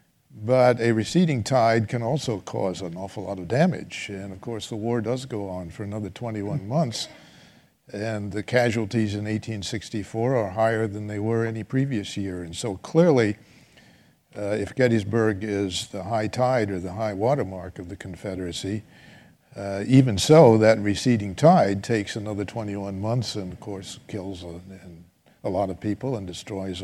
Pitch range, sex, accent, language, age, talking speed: 100-120 Hz, male, American, English, 60-79, 170 wpm